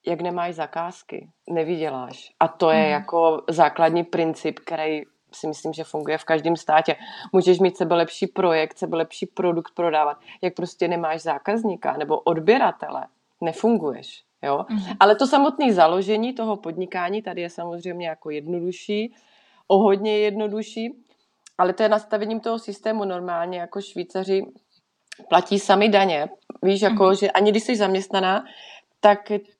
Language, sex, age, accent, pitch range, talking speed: Czech, female, 30-49, native, 175-210 Hz, 140 wpm